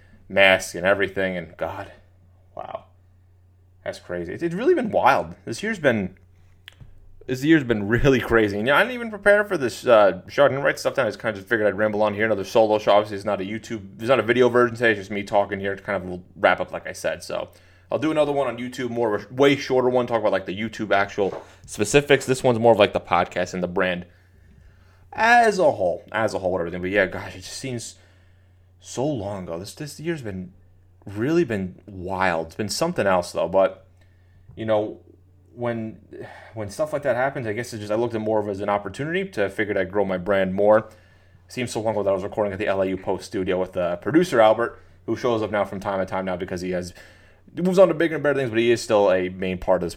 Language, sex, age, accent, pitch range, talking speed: English, male, 30-49, American, 90-120 Hz, 250 wpm